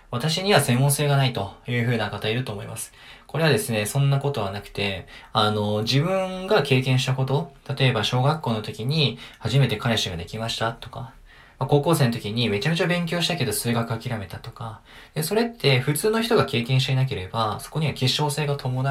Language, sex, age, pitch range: Japanese, male, 20-39, 115-145 Hz